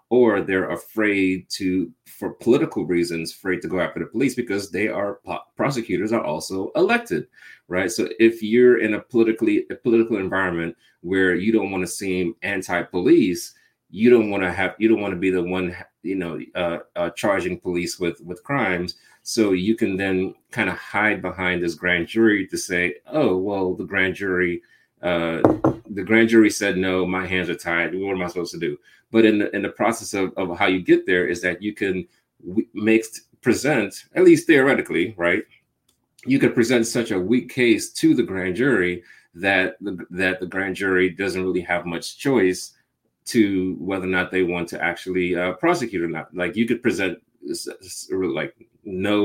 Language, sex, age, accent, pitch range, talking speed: English, male, 30-49, American, 90-110 Hz, 190 wpm